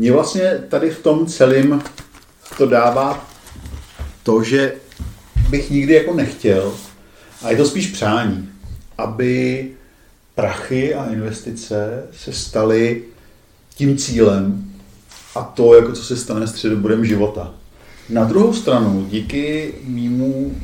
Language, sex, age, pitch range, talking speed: Czech, male, 50-69, 105-135 Hz, 115 wpm